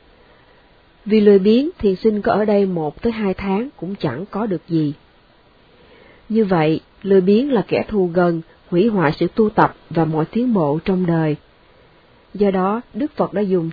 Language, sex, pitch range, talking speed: Vietnamese, female, 175-220 Hz, 185 wpm